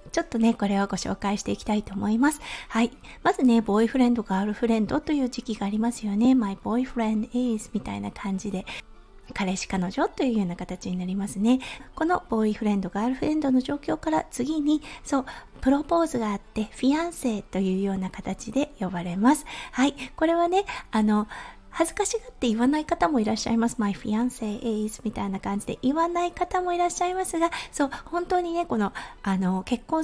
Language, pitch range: Japanese, 210-305 Hz